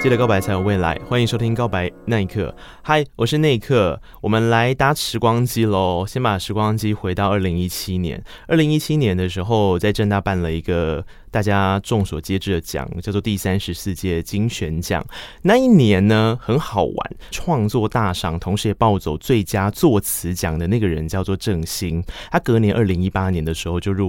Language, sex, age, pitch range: Chinese, male, 20-39, 95-140 Hz